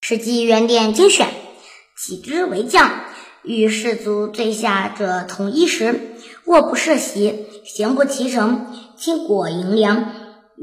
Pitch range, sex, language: 205-265 Hz, male, Chinese